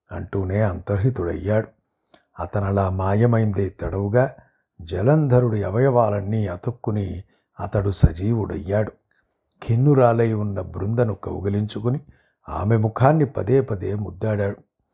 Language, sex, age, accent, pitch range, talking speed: Telugu, male, 60-79, native, 100-130 Hz, 70 wpm